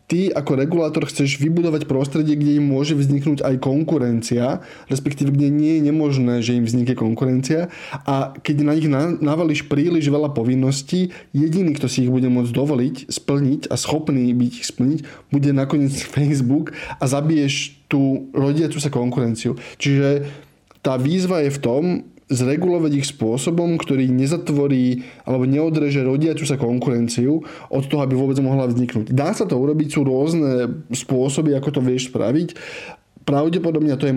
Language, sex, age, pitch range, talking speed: Slovak, male, 10-29, 130-150 Hz, 155 wpm